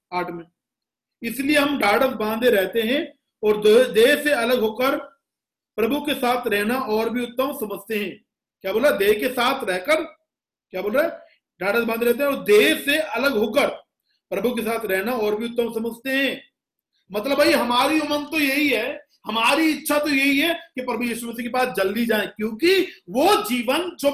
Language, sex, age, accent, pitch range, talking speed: Hindi, male, 50-69, native, 215-295 Hz, 175 wpm